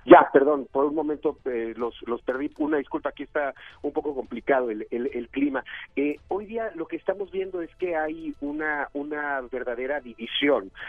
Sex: male